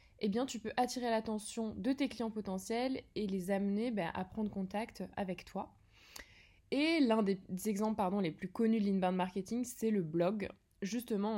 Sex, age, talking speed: female, 20-39, 185 wpm